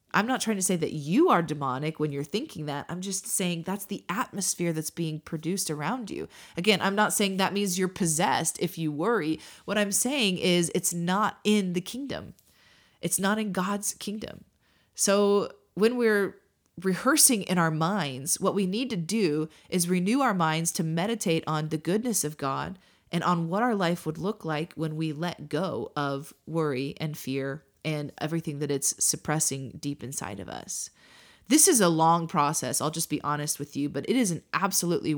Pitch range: 150-200 Hz